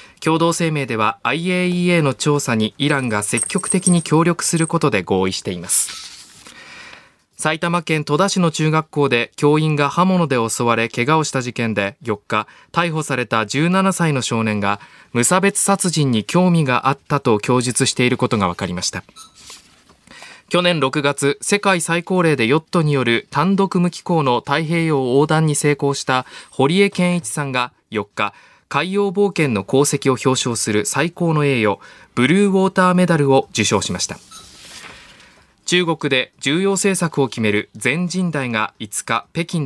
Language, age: Japanese, 20-39